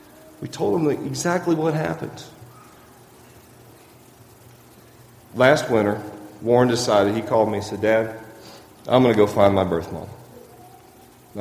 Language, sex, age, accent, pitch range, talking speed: English, male, 40-59, American, 100-120 Hz, 130 wpm